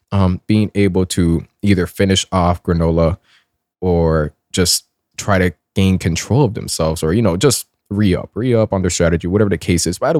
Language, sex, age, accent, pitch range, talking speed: English, male, 20-39, American, 95-120 Hz, 180 wpm